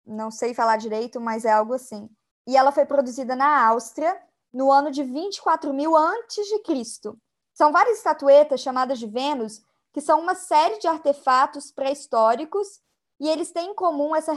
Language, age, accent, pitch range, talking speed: Portuguese, 20-39, Brazilian, 250-315 Hz, 170 wpm